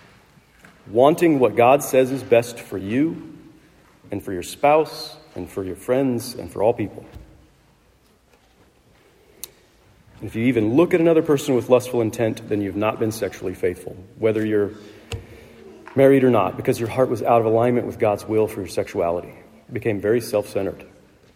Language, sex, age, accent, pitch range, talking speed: English, male, 40-59, American, 105-130 Hz, 165 wpm